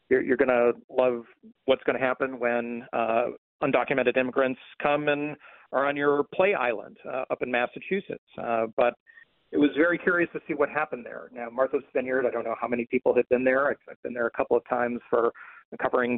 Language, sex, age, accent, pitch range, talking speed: English, male, 40-59, American, 120-140 Hz, 205 wpm